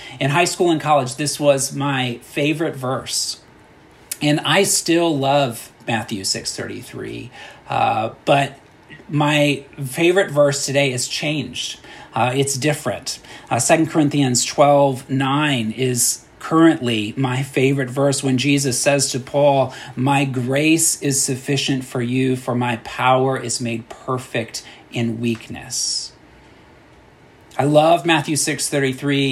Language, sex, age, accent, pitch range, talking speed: English, male, 40-59, American, 125-145 Hz, 125 wpm